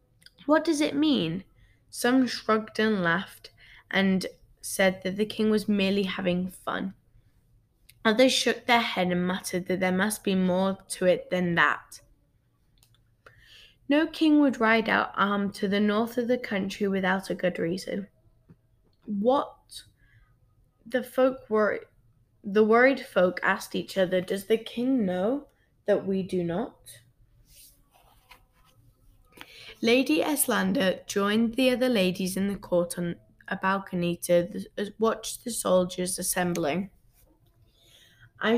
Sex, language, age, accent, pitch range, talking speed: female, English, 10-29, British, 170-220 Hz, 135 wpm